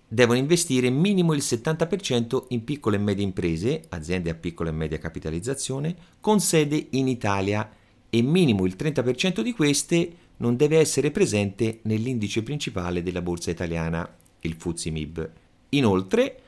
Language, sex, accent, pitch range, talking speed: Italian, male, native, 95-150 Hz, 140 wpm